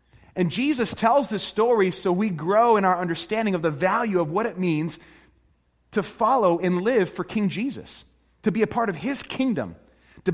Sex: male